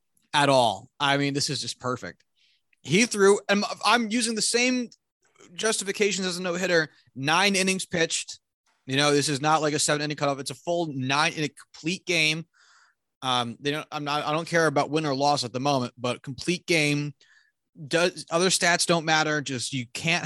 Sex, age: male, 30-49